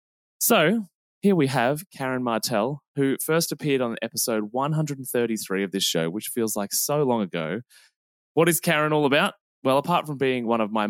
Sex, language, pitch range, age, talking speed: male, English, 105-140 Hz, 20-39, 180 wpm